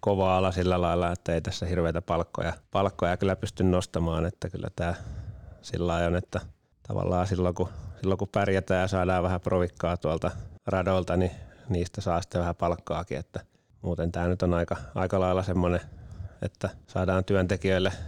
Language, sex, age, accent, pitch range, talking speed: Finnish, male, 30-49, native, 85-95 Hz, 165 wpm